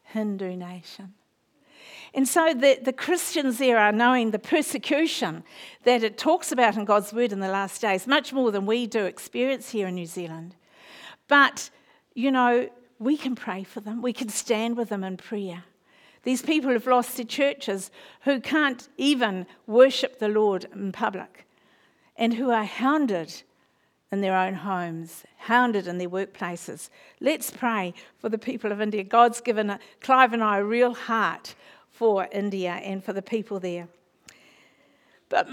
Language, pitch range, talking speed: English, 200-255 Hz, 165 wpm